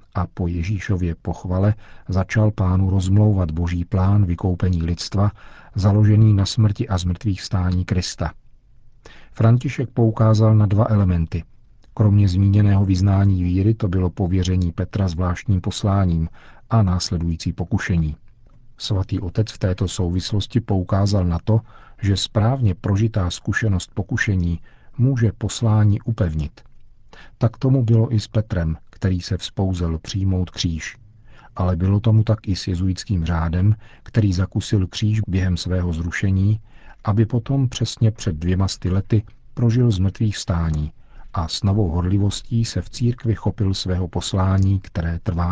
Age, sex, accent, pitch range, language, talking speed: 40-59, male, native, 90-110 Hz, Czech, 130 wpm